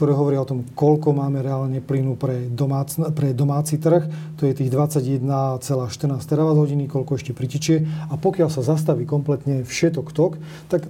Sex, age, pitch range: male, 30-49, 140-155 Hz